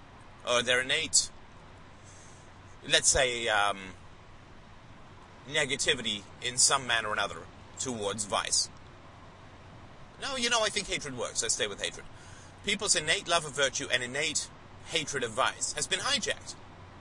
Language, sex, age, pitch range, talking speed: English, male, 30-49, 95-125 Hz, 135 wpm